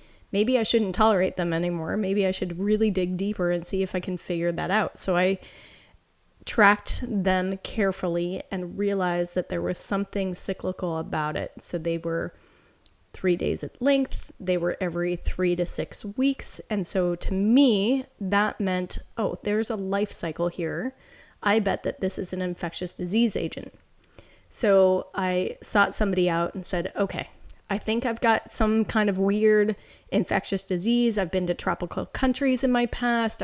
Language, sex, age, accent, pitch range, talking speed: English, female, 10-29, American, 180-220 Hz, 170 wpm